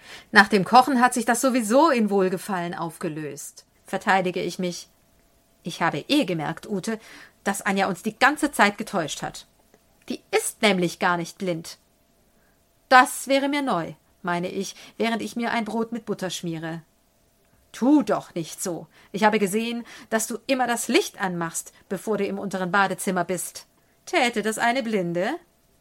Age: 40-59